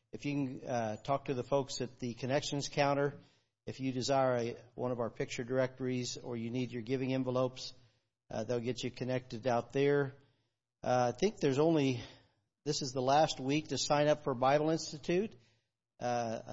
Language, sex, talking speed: English, male, 180 wpm